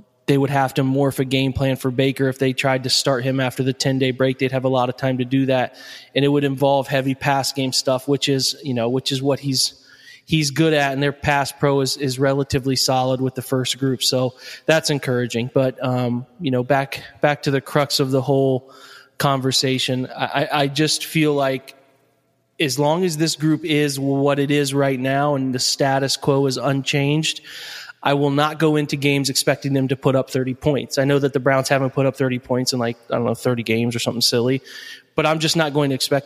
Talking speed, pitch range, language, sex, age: 230 wpm, 130-145 Hz, English, male, 20-39